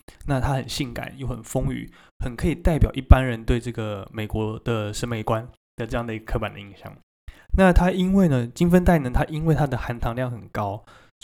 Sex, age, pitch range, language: male, 20-39, 110-135 Hz, Chinese